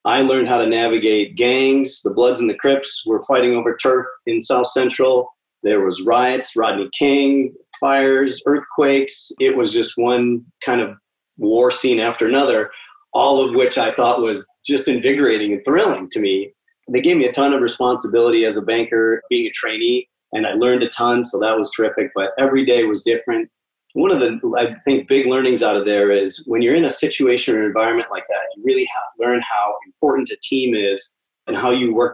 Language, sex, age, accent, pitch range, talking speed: English, male, 30-49, American, 115-140 Hz, 200 wpm